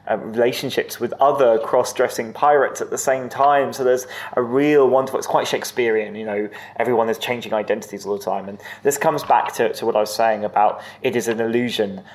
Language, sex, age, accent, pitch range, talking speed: English, male, 20-39, British, 105-130 Hz, 210 wpm